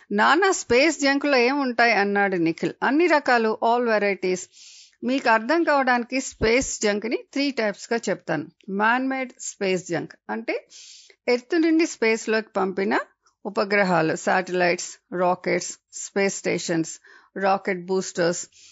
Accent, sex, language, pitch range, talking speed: Indian, female, English, 185-235 Hz, 110 wpm